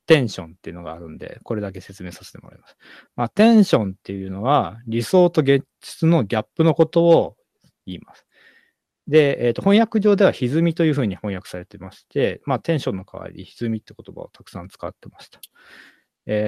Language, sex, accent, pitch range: Japanese, male, native, 105-175 Hz